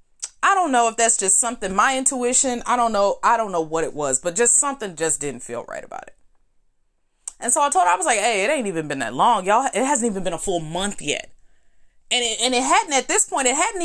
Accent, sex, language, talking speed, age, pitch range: American, female, English, 260 wpm, 20-39, 190-270 Hz